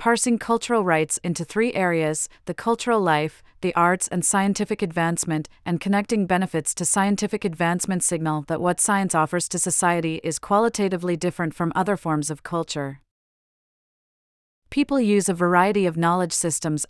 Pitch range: 165-200 Hz